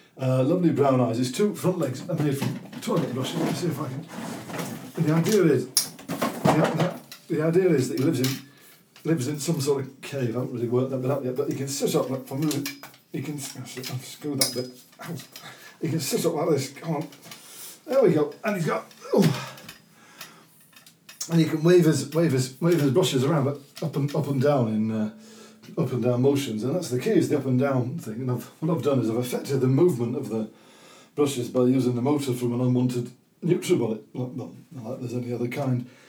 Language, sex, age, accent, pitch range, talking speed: English, male, 40-59, British, 125-155 Hz, 225 wpm